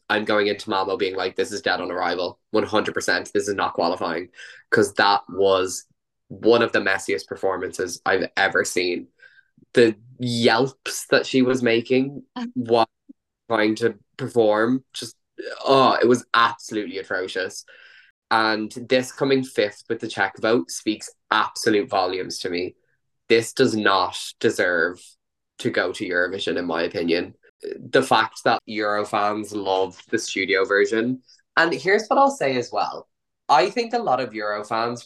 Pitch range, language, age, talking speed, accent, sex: 105-140 Hz, English, 20-39, 155 wpm, Irish, male